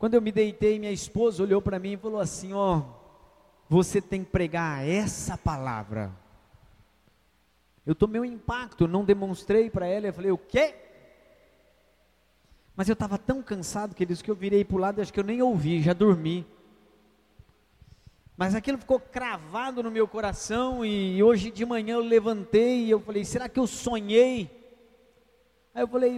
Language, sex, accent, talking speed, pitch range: Portuguese, male, Brazilian, 170 wpm, 165-215 Hz